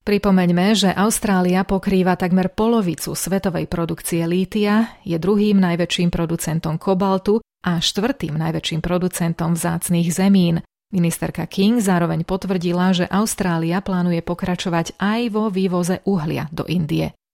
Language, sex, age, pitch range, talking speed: Slovak, female, 30-49, 170-200 Hz, 120 wpm